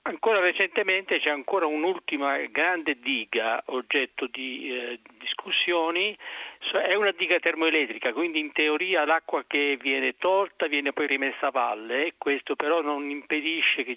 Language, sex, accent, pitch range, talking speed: Italian, male, native, 135-195 Hz, 140 wpm